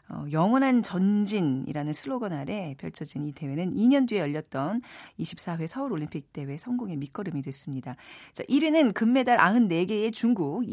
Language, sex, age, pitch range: Korean, female, 40-59, 150-245 Hz